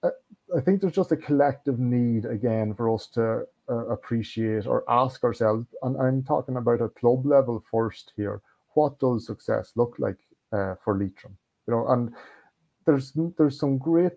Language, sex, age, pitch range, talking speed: English, male, 30-49, 105-130 Hz, 170 wpm